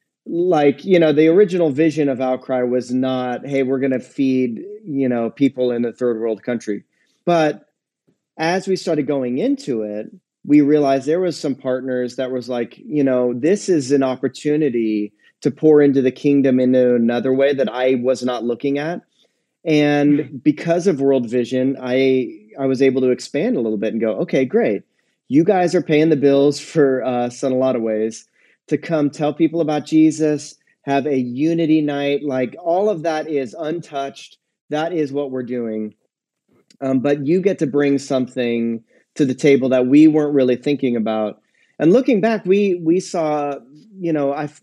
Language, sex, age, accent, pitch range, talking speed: English, male, 30-49, American, 125-155 Hz, 185 wpm